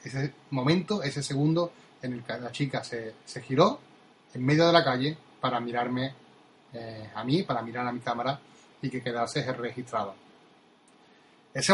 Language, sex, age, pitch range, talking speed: Spanish, male, 30-49, 125-150 Hz, 165 wpm